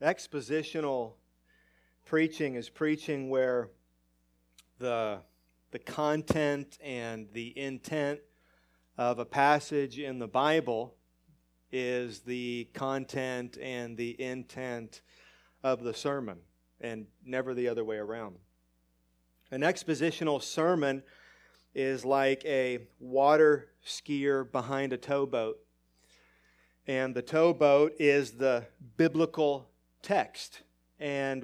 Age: 40-59